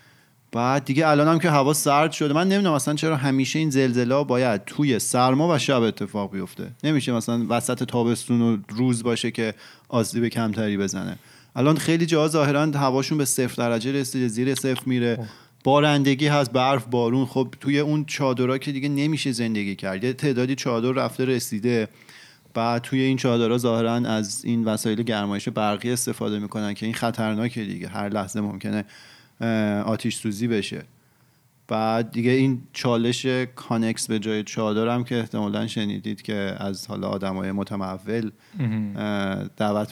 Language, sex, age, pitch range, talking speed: Persian, male, 30-49, 110-130 Hz, 145 wpm